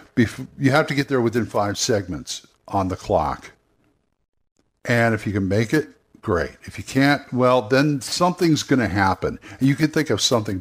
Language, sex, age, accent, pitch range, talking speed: English, male, 60-79, American, 105-135 Hz, 190 wpm